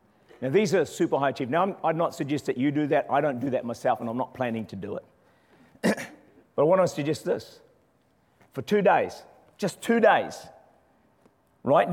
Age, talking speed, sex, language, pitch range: 50-69, 195 wpm, male, English, 125-170 Hz